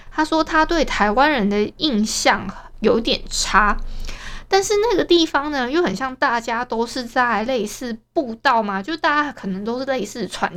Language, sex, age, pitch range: Chinese, female, 20-39, 210-285 Hz